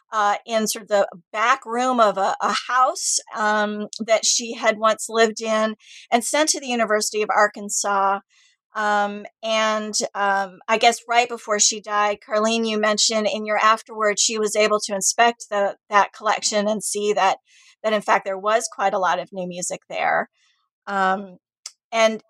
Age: 30-49